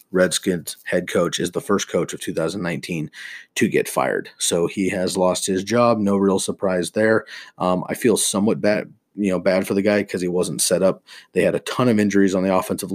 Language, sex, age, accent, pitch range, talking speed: English, male, 30-49, American, 95-115 Hz, 220 wpm